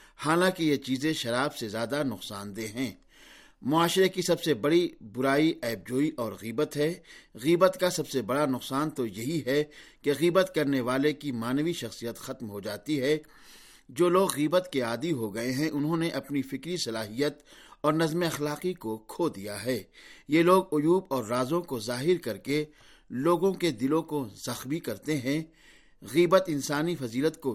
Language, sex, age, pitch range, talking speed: Urdu, male, 50-69, 125-165 Hz, 175 wpm